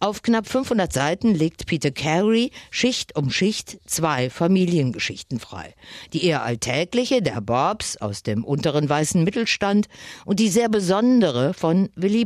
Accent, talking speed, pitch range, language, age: German, 140 wpm, 135-205 Hz, German, 50-69